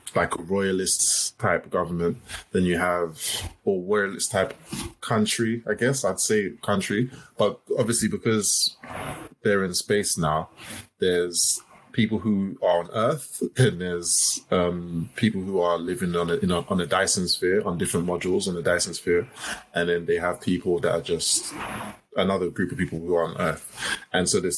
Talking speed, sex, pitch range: 175 wpm, male, 90-110 Hz